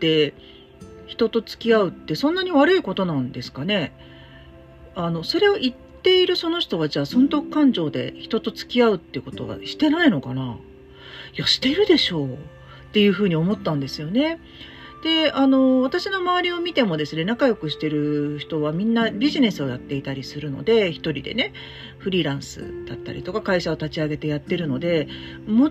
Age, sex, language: 40-59, female, Japanese